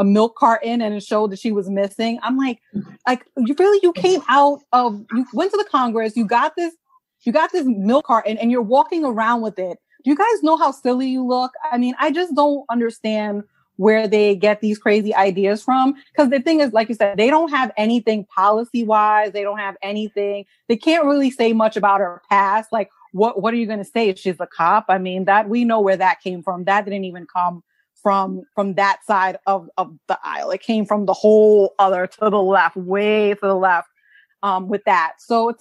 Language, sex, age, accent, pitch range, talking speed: English, female, 30-49, American, 195-240 Hz, 225 wpm